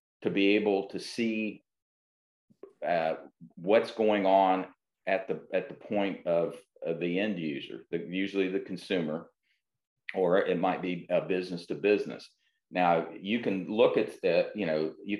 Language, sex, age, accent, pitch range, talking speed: English, male, 40-59, American, 90-105 Hz, 150 wpm